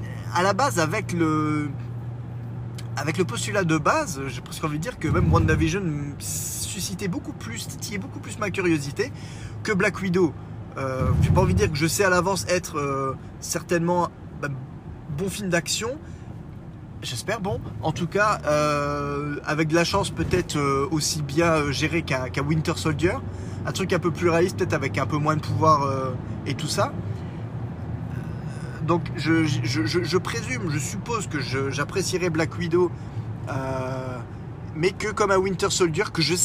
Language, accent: French, French